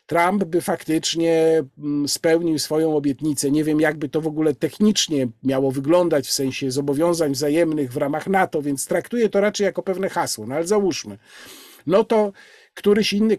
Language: Polish